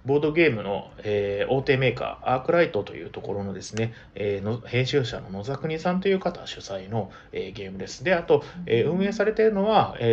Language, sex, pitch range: Japanese, male, 110-160 Hz